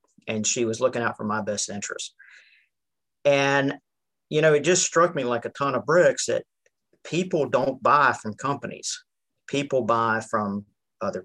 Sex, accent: male, American